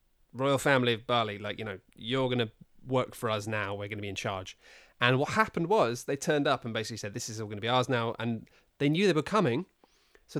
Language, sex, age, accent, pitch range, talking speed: English, male, 20-39, British, 110-145 Hz, 240 wpm